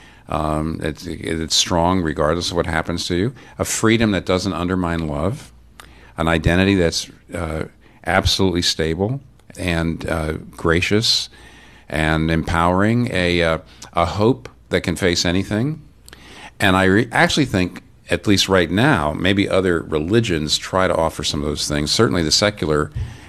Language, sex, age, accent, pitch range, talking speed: English, male, 50-69, American, 80-95 Hz, 140 wpm